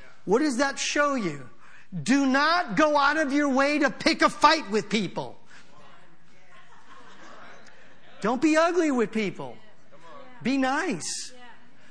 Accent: American